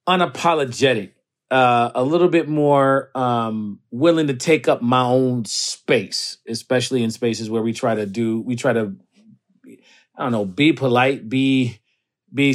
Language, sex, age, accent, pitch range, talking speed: English, male, 40-59, American, 125-175 Hz, 155 wpm